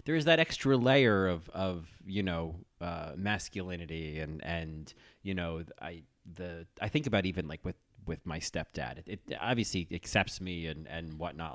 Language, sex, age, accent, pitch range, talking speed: English, male, 30-49, American, 90-115 Hz, 175 wpm